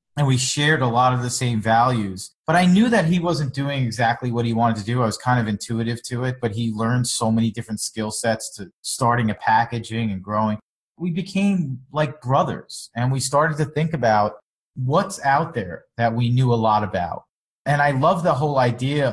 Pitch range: 110-135 Hz